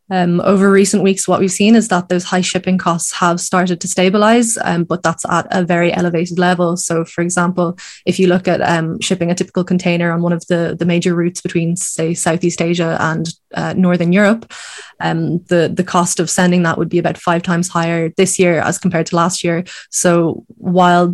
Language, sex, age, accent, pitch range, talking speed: English, female, 20-39, Irish, 170-185 Hz, 210 wpm